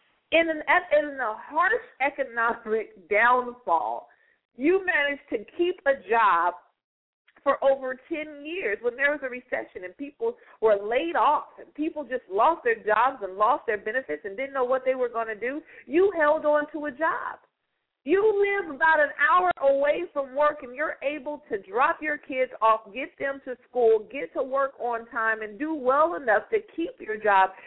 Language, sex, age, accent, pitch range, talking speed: English, female, 50-69, American, 235-340 Hz, 185 wpm